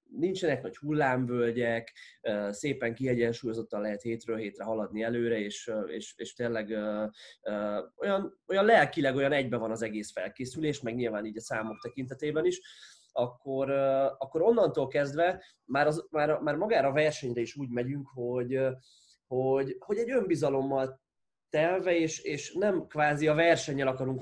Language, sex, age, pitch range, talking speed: Hungarian, male, 20-39, 115-145 Hz, 130 wpm